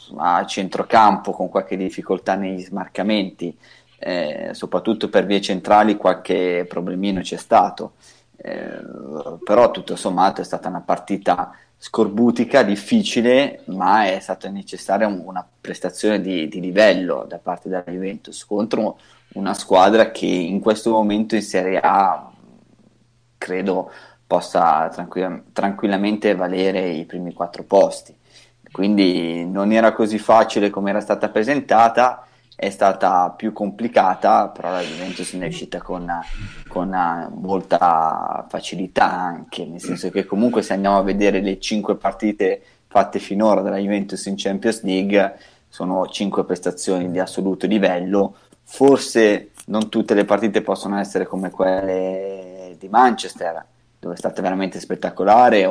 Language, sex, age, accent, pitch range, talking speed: Italian, male, 20-39, native, 95-105 Hz, 130 wpm